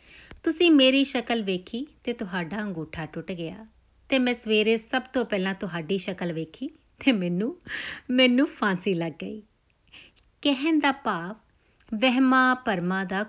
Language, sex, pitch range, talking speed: Punjabi, female, 185-250 Hz, 135 wpm